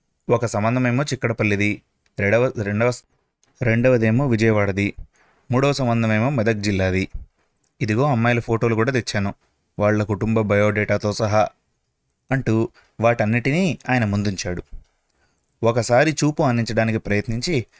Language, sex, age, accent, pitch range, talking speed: Telugu, male, 20-39, native, 105-125 Hz, 100 wpm